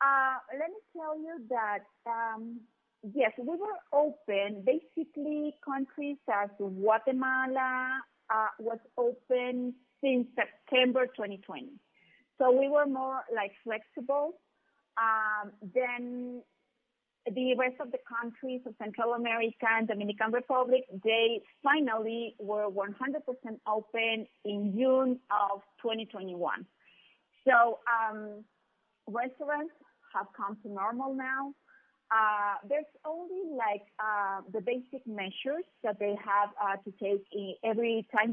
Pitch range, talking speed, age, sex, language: 210-265 Hz, 115 wpm, 30-49, female, English